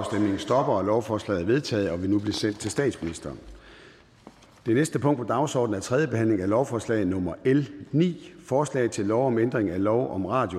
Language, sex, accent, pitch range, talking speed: Danish, male, native, 100-130 Hz, 195 wpm